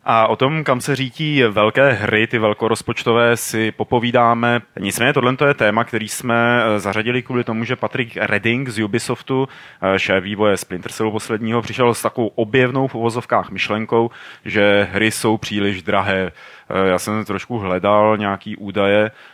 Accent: native